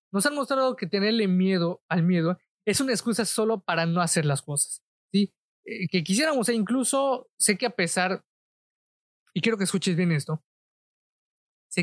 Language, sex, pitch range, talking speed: Spanish, male, 165-205 Hz, 160 wpm